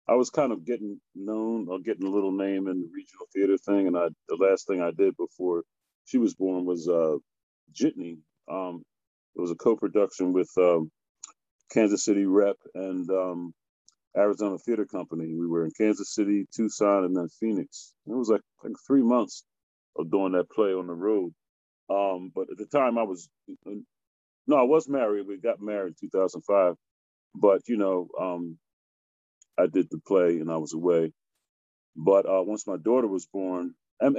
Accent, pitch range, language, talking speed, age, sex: American, 85-105 Hz, English, 180 wpm, 40-59, male